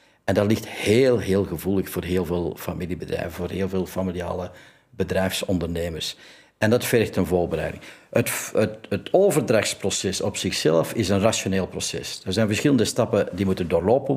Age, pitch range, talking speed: 60-79, 90-110 Hz, 155 wpm